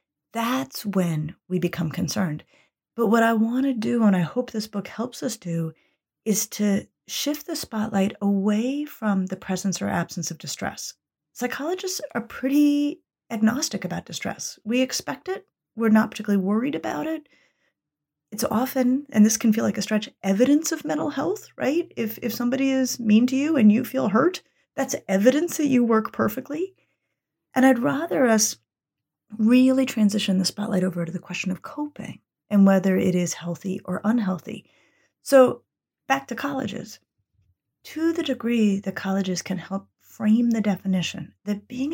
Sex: female